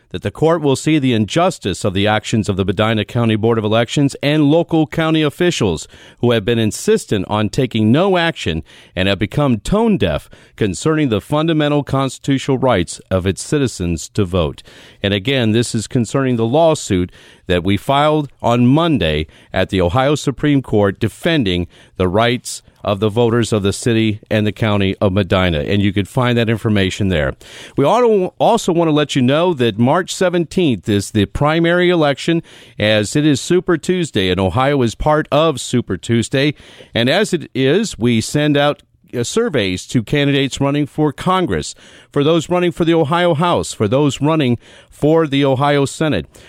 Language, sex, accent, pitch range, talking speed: English, male, American, 110-150 Hz, 175 wpm